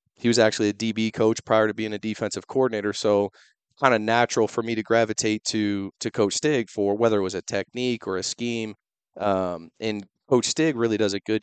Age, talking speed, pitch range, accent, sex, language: 30-49, 215 wpm, 100-115 Hz, American, male, English